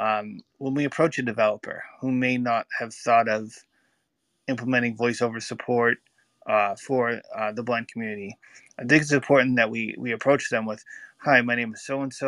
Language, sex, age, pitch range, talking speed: English, male, 20-39, 110-135 Hz, 175 wpm